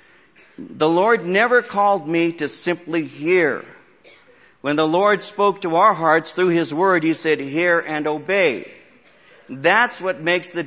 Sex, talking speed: male, 150 wpm